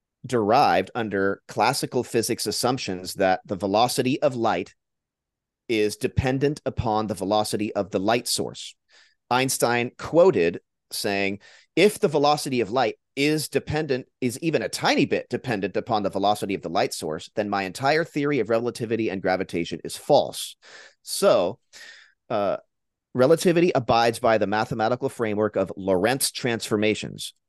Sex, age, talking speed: male, 30-49, 140 wpm